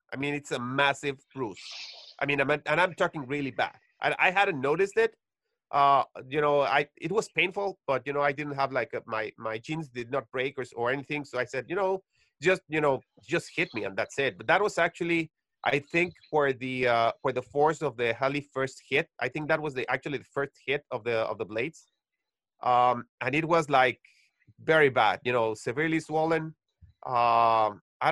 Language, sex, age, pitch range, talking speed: English, male, 30-49, 130-160 Hz, 215 wpm